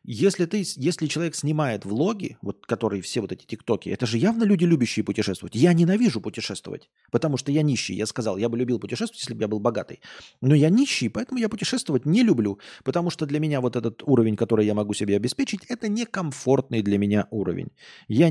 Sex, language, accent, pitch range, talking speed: male, Russian, native, 105-170 Hz, 205 wpm